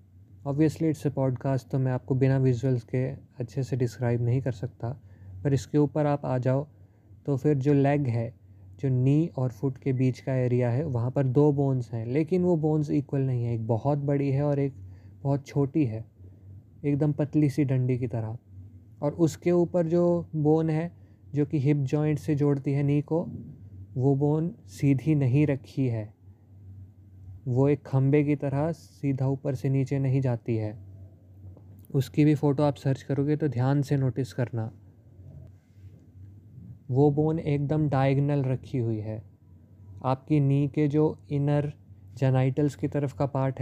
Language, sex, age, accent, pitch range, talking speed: Hindi, male, 20-39, native, 110-150 Hz, 170 wpm